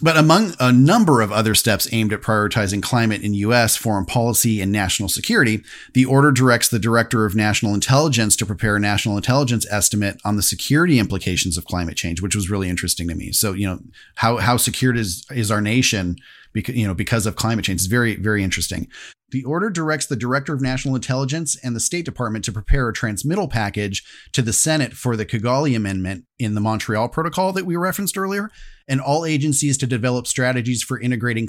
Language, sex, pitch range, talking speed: English, male, 105-130 Hz, 200 wpm